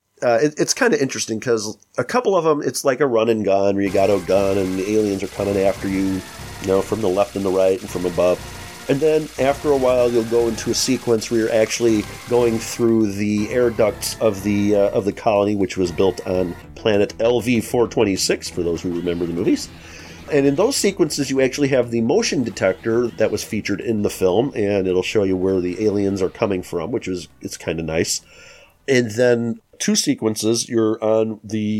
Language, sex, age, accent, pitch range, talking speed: English, male, 40-59, American, 100-120 Hz, 215 wpm